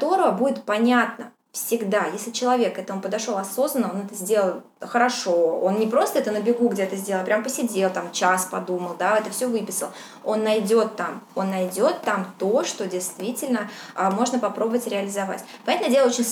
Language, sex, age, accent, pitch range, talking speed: Russian, female, 20-39, native, 195-245 Hz, 175 wpm